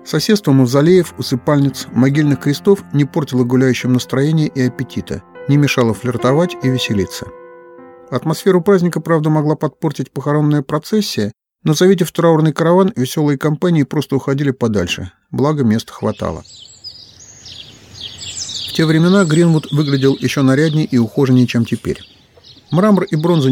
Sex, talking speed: male, 125 wpm